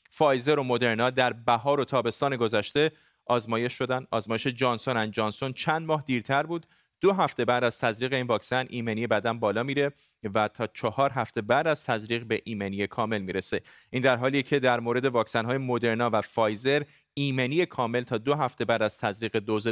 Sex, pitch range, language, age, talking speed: male, 115-145 Hz, Persian, 30-49, 180 wpm